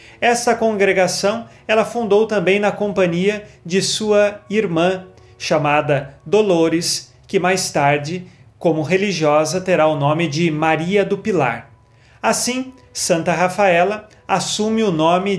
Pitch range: 155-205 Hz